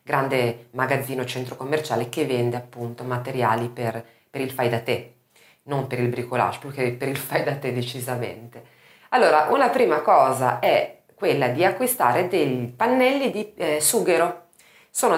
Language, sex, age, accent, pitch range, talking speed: Italian, female, 30-49, native, 125-170 Hz, 160 wpm